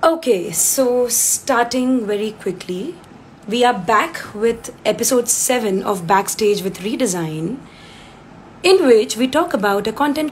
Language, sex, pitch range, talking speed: English, female, 185-255 Hz, 130 wpm